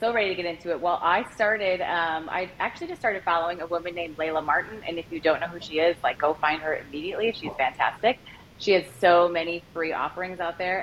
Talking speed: 240 wpm